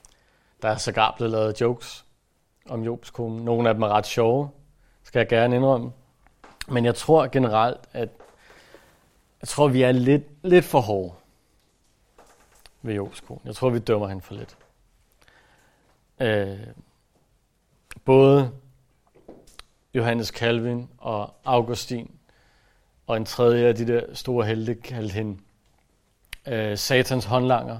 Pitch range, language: 110-130 Hz, Danish